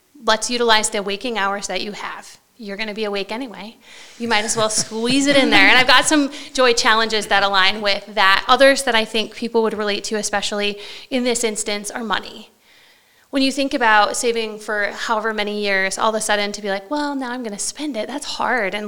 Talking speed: 230 wpm